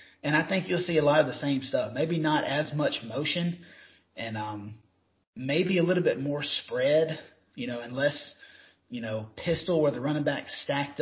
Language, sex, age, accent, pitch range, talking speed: English, male, 30-49, American, 125-150 Hz, 190 wpm